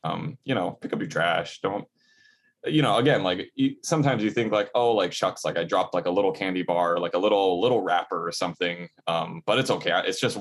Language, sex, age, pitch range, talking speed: English, male, 20-39, 90-140 Hz, 230 wpm